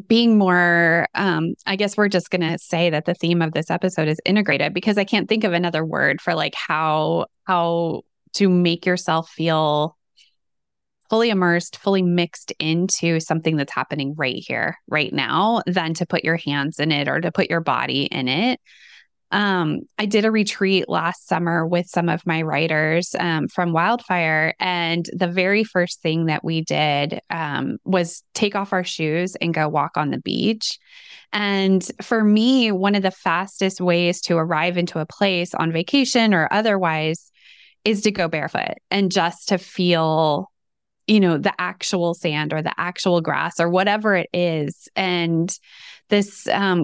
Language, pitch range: English, 165-205 Hz